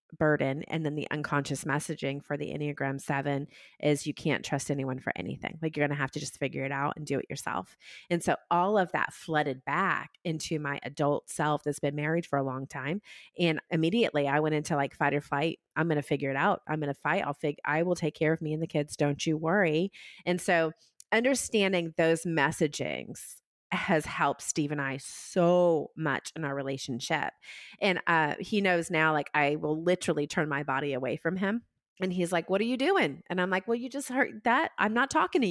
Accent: American